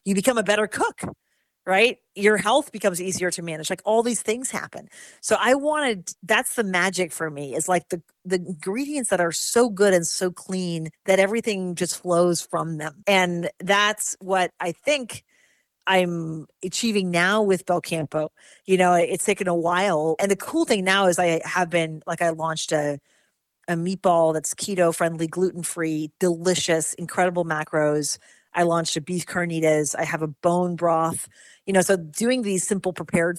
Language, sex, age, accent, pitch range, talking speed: English, female, 40-59, American, 165-195 Hz, 175 wpm